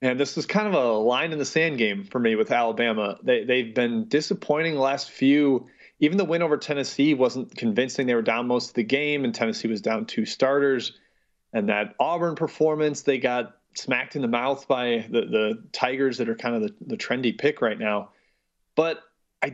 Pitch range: 120-145 Hz